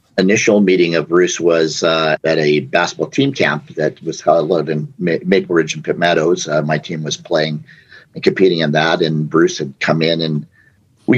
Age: 50-69